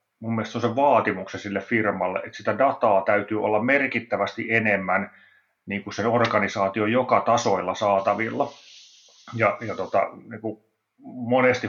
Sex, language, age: male, English, 30-49